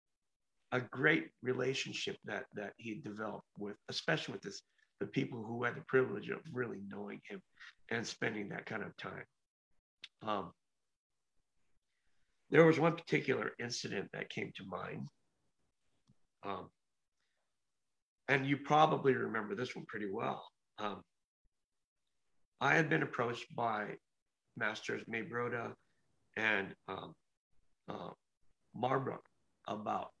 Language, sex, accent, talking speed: English, male, American, 115 wpm